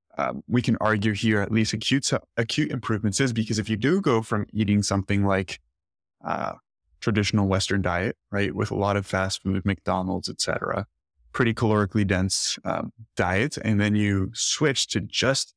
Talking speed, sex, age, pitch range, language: 170 wpm, male, 20-39, 100-120 Hz, English